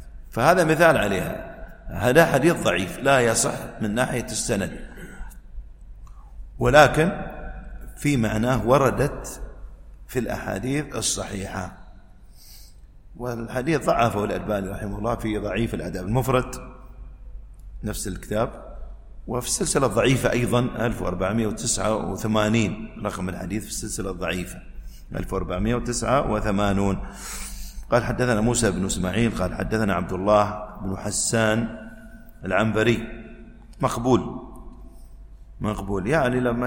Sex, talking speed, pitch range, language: male, 90 wpm, 100-120 Hz, Arabic